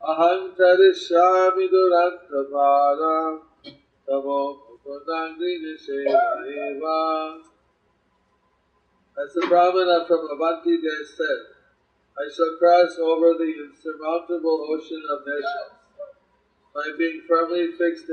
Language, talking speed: English, 65 wpm